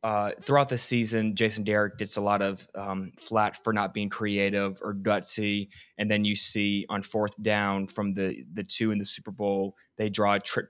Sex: male